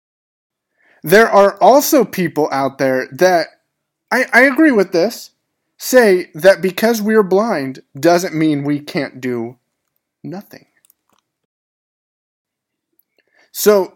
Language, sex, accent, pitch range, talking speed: English, male, American, 145-205 Hz, 105 wpm